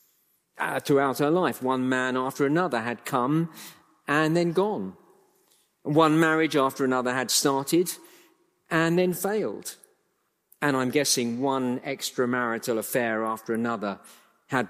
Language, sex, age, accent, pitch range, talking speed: English, male, 50-69, British, 120-165 Hz, 125 wpm